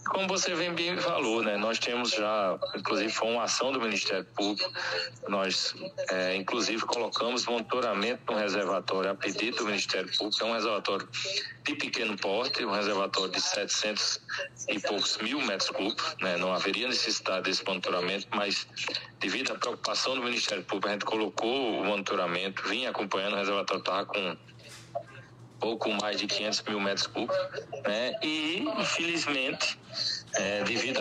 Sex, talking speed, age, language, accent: male, 155 wpm, 20-39, Portuguese, Brazilian